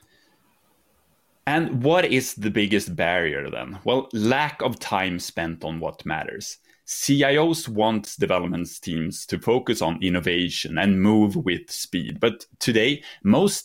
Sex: male